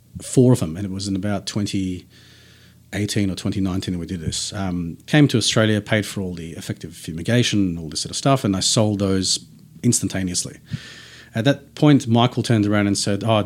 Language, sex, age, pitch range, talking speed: English, male, 40-59, 95-125 Hz, 195 wpm